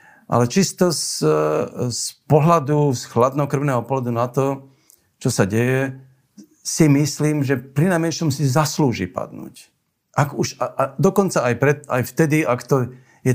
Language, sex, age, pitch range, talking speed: Slovak, male, 50-69, 105-140 Hz, 150 wpm